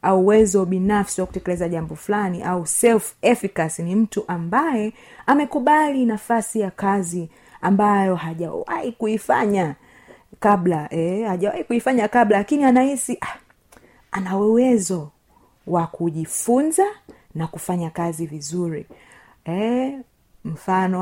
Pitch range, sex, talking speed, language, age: 165-210 Hz, female, 105 wpm, Swahili, 30-49